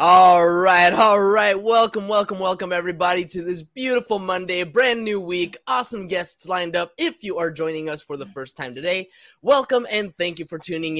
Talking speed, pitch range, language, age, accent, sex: 190 wpm, 160-245 Hz, English, 20-39, American, male